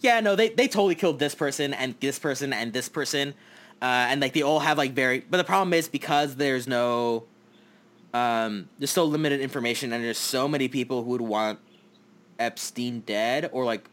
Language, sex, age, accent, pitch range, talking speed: English, male, 20-39, American, 115-145 Hz, 200 wpm